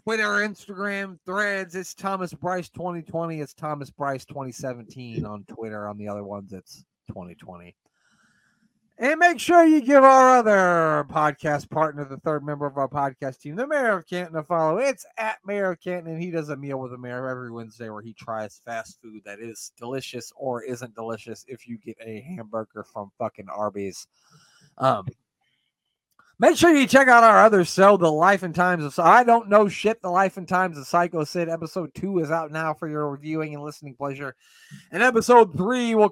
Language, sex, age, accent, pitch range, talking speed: English, male, 30-49, American, 140-195 Hz, 190 wpm